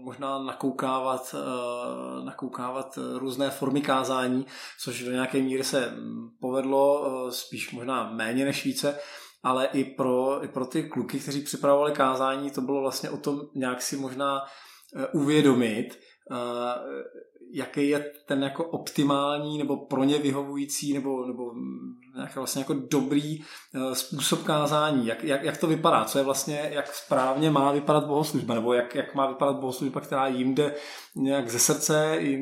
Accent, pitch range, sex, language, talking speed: native, 130-145 Hz, male, Czech, 145 wpm